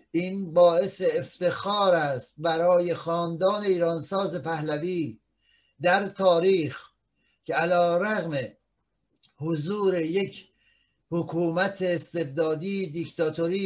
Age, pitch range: 60-79, 165-190 Hz